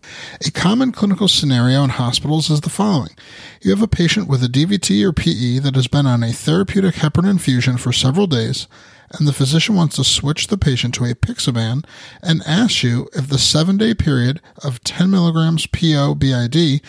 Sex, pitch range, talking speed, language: male, 130-170 Hz, 180 wpm, English